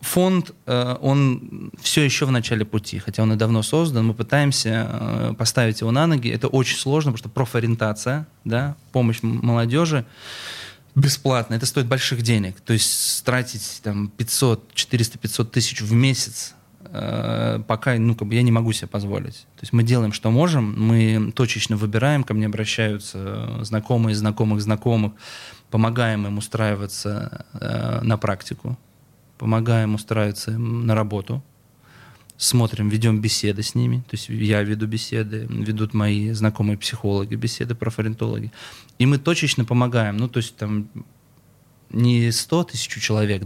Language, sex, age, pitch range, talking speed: Russian, male, 20-39, 110-125 Hz, 140 wpm